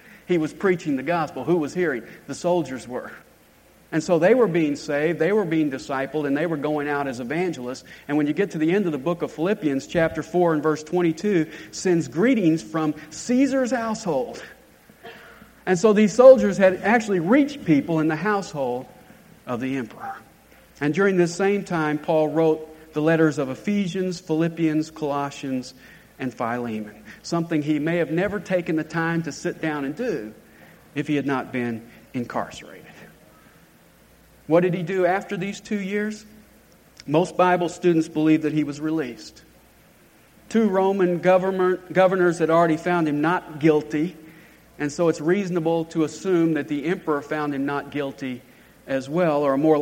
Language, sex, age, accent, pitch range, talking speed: English, male, 50-69, American, 150-180 Hz, 170 wpm